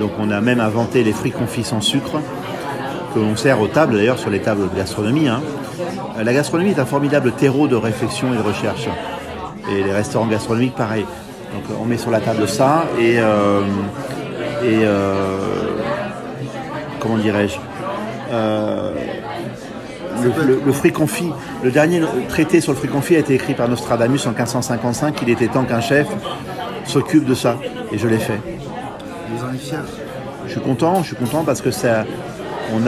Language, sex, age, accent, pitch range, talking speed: French, male, 40-59, French, 110-140 Hz, 165 wpm